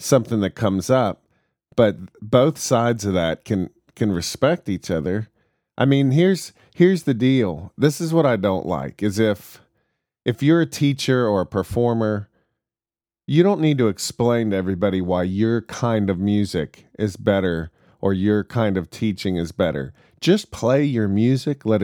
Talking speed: 170 wpm